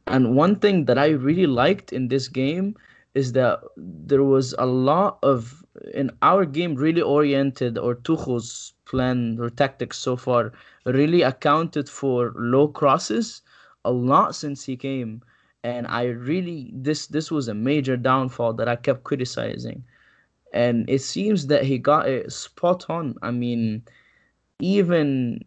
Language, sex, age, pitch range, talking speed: Arabic, male, 20-39, 125-160 Hz, 150 wpm